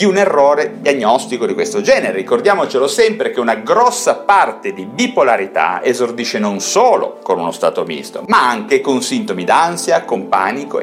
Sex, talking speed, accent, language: male, 160 wpm, native, Italian